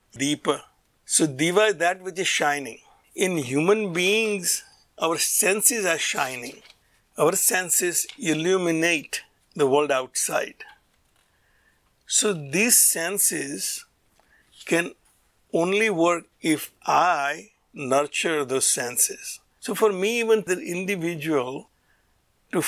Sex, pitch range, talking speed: male, 145-190 Hz, 105 wpm